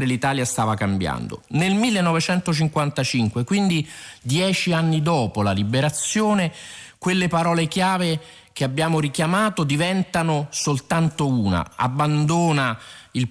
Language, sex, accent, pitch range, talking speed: Italian, male, native, 135-175 Hz, 100 wpm